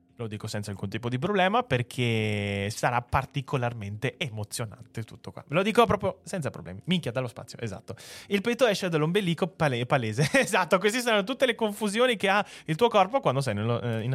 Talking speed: 180 wpm